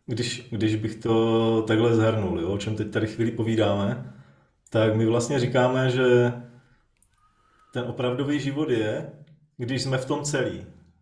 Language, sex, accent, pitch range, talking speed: Czech, male, native, 115-145 Hz, 140 wpm